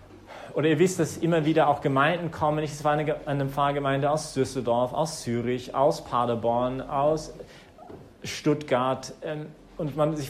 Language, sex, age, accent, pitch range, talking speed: English, male, 40-59, German, 125-160 Hz, 145 wpm